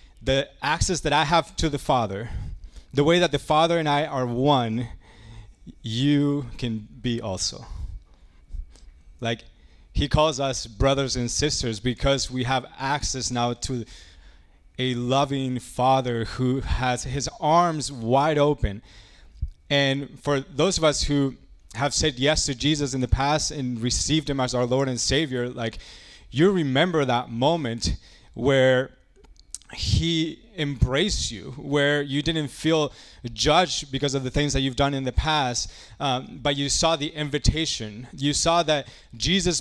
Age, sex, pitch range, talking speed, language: 20-39, male, 115-150 Hz, 150 wpm, English